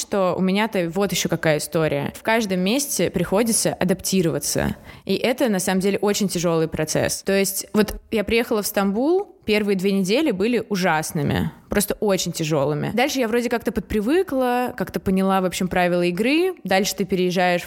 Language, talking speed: Russian, 165 wpm